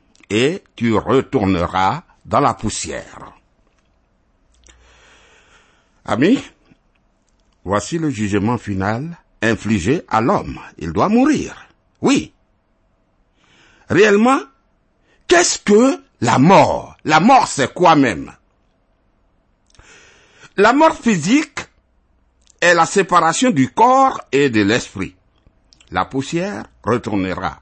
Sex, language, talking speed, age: male, French, 90 wpm, 60-79